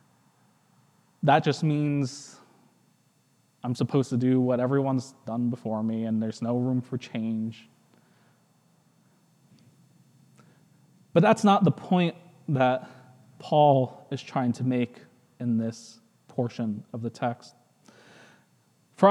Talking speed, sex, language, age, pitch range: 115 wpm, male, English, 20-39, 125-175 Hz